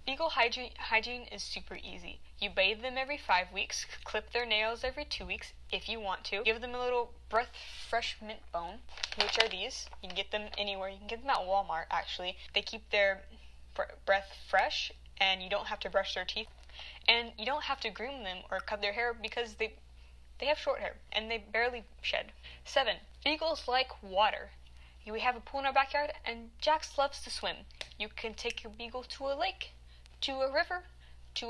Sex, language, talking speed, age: female, English, 200 wpm, 10-29